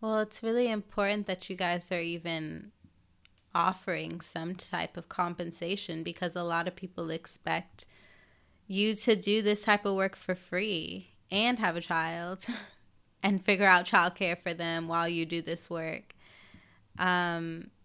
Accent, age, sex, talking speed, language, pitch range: American, 20-39, female, 150 wpm, English, 165-190 Hz